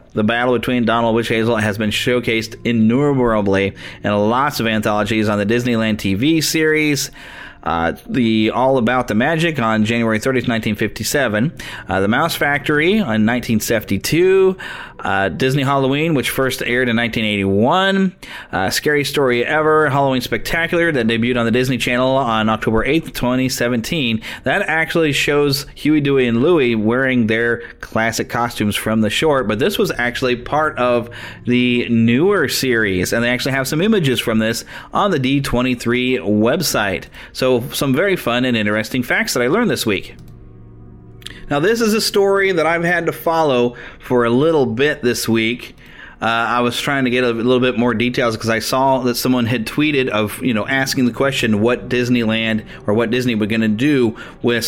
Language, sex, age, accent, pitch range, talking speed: English, male, 30-49, American, 115-140 Hz, 170 wpm